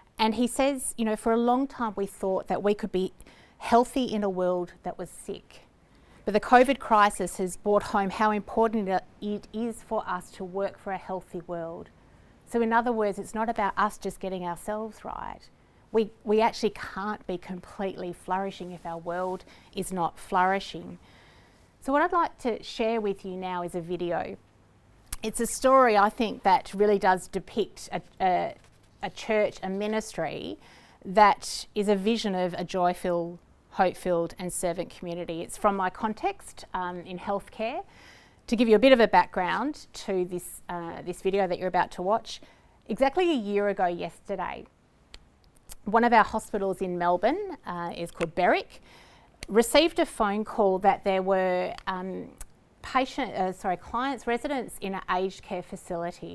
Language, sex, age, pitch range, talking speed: English, female, 30-49, 180-225 Hz, 170 wpm